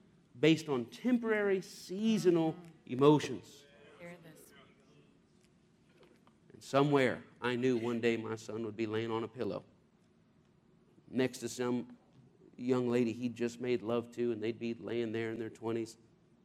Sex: male